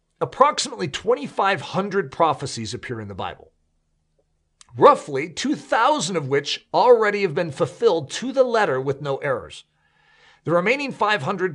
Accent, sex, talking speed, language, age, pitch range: American, male, 125 wpm, English, 40-59, 145-230 Hz